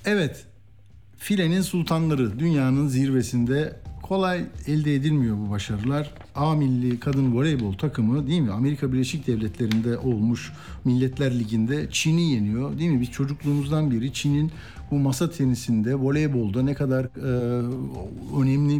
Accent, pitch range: native, 125-155 Hz